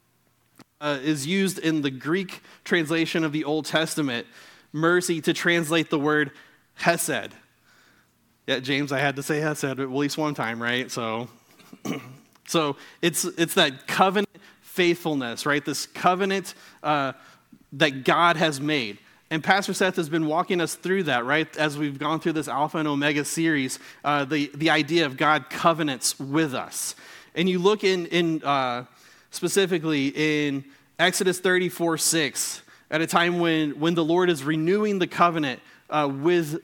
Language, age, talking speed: English, 30-49, 155 wpm